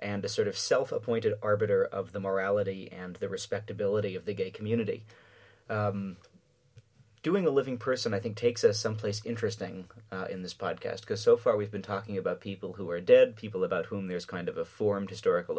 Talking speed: 195 wpm